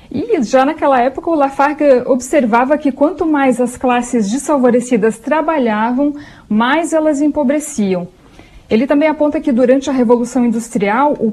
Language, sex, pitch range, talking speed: Portuguese, female, 225-285 Hz, 140 wpm